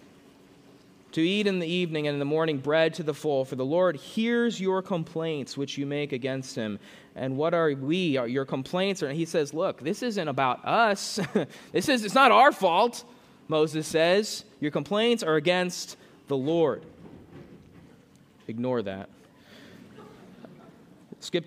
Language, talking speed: English, 155 wpm